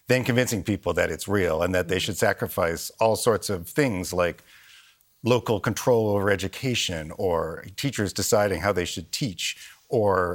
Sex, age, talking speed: male, 50-69, 160 wpm